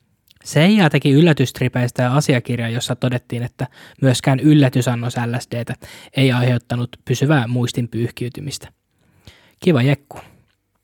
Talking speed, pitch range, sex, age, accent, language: 95 wpm, 120-135 Hz, male, 20-39, native, Finnish